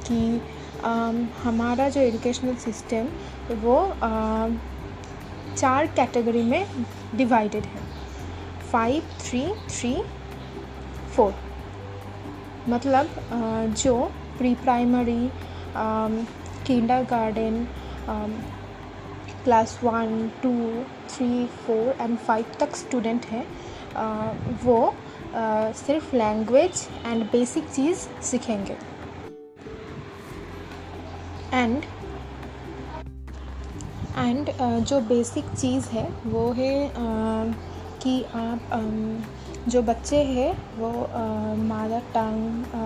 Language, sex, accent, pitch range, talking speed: Hindi, female, native, 210-245 Hz, 85 wpm